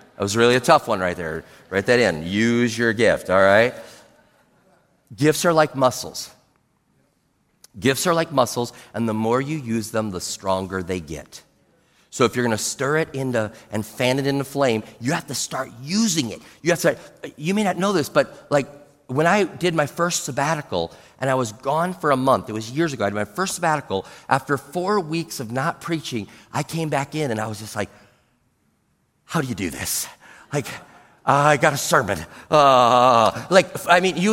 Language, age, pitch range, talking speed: English, 40-59, 125-170 Hz, 205 wpm